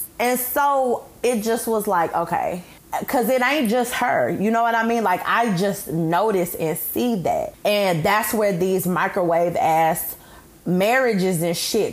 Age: 20-39